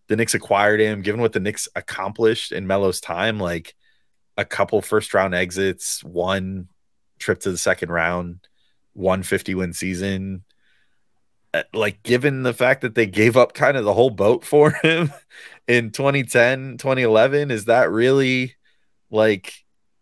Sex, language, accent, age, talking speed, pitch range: male, English, American, 20-39, 150 wpm, 95-125 Hz